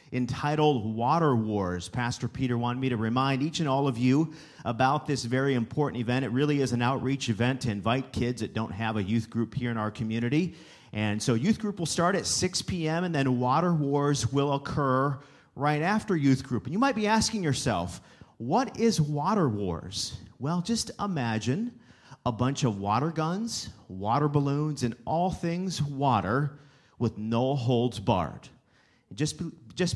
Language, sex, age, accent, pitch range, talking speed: English, male, 40-59, American, 110-145 Hz, 175 wpm